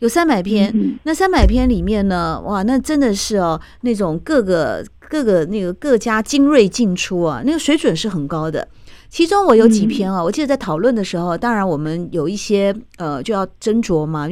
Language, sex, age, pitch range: Chinese, female, 50-69, 175-250 Hz